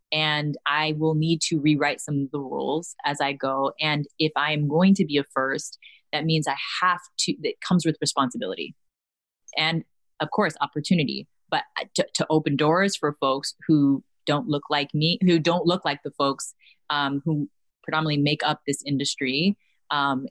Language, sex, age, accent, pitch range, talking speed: English, female, 20-39, American, 140-165 Hz, 175 wpm